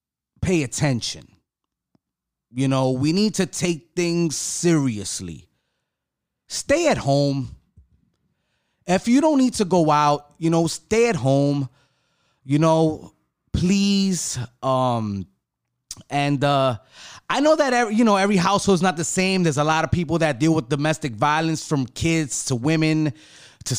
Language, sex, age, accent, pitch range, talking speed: English, male, 30-49, American, 120-160 Hz, 145 wpm